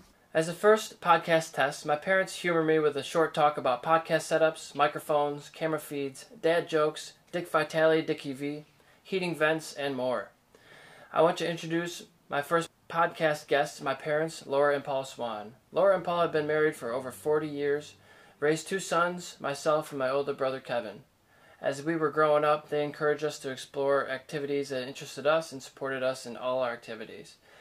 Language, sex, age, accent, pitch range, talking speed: English, male, 20-39, American, 135-155 Hz, 180 wpm